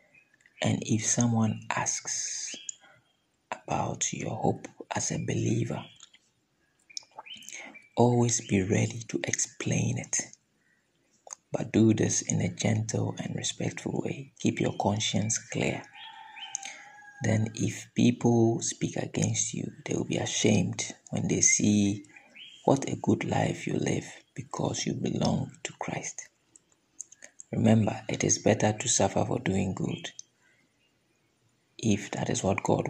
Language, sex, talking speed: English, male, 120 wpm